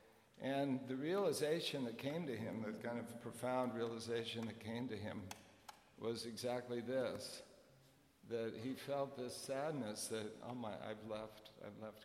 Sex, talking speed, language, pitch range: male, 155 wpm, English, 105-120 Hz